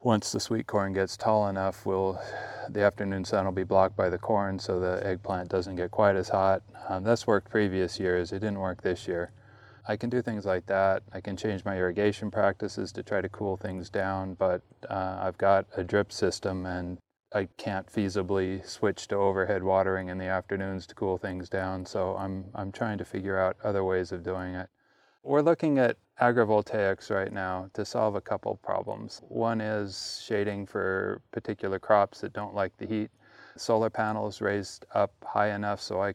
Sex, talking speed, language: male, 195 wpm, English